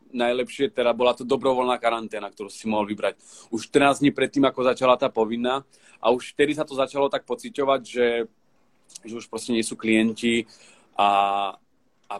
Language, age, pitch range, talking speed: Slovak, 40-59, 120-145 Hz, 170 wpm